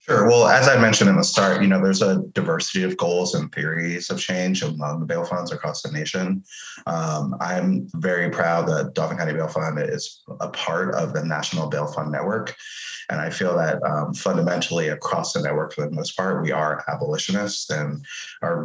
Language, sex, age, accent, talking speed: English, male, 30-49, American, 200 wpm